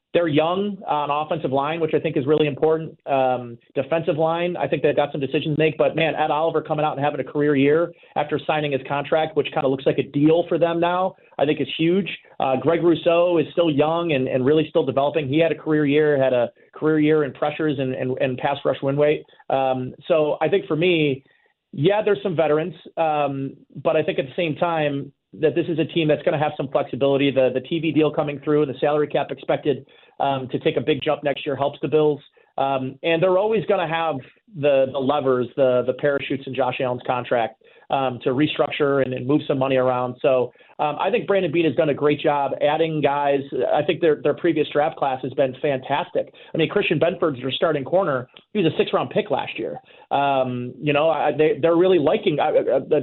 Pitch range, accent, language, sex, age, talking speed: 140-170 Hz, American, English, male, 30-49, 230 wpm